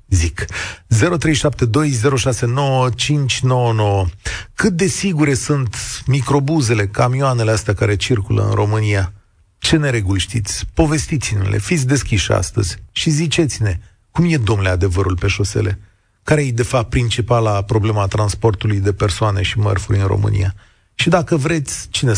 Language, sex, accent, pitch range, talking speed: Romanian, male, native, 95-120 Hz, 125 wpm